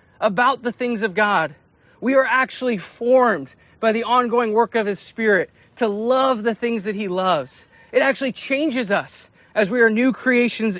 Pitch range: 175-240 Hz